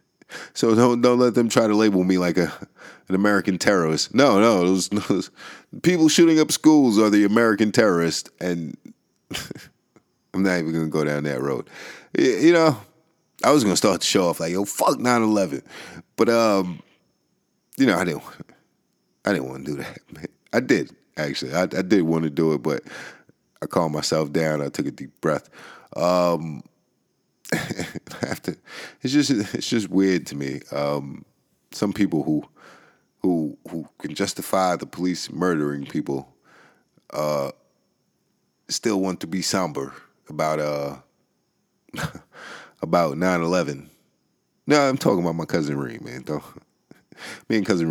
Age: 30-49